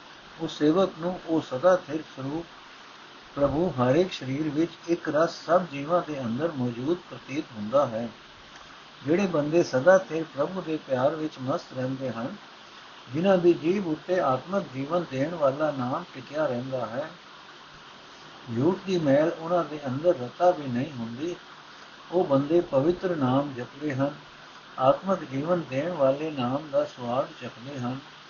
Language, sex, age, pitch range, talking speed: Punjabi, male, 60-79, 130-175 Hz, 95 wpm